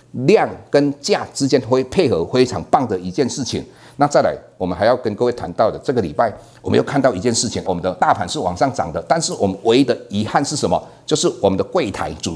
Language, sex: Chinese, male